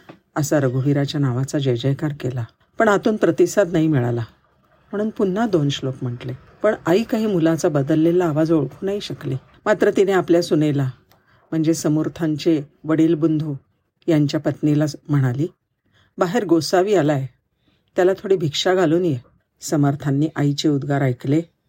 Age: 50-69